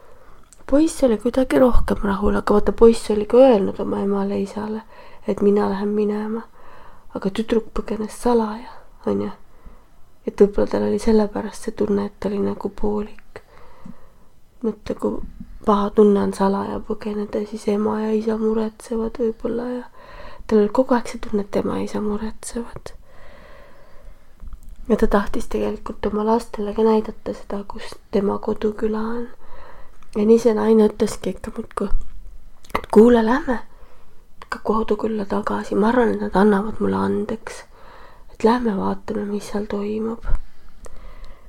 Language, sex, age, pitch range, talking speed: English, female, 20-39, 205-235 Hz, 135 wpm